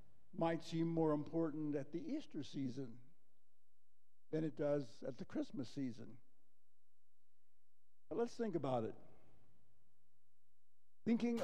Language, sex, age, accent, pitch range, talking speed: English, male, 60-79, American, 130-165 Hz, 110 wpm